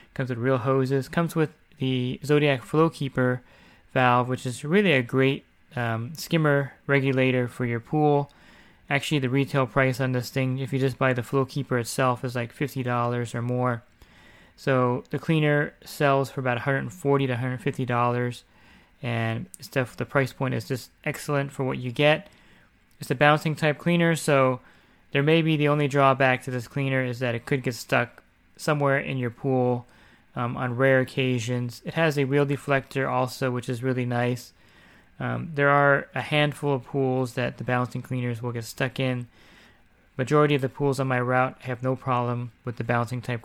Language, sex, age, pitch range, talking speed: English, male, 20-39, 125-140 Hz, 180 wpm